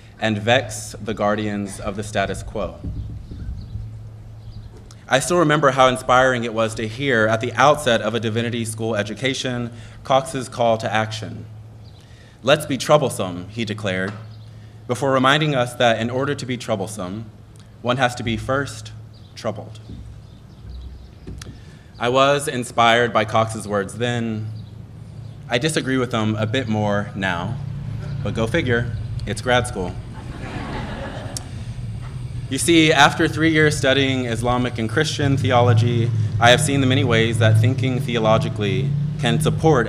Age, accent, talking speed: 30-49, American, 135 wpm